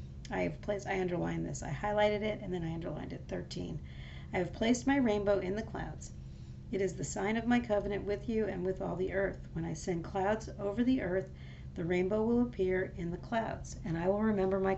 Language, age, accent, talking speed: English, 40-59, American, 225 wpm